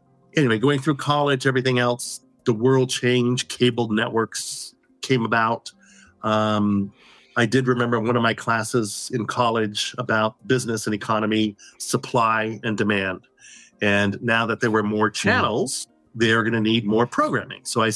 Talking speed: 150 wpm